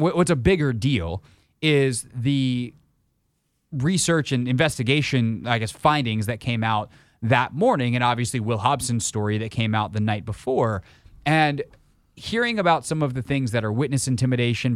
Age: 30-49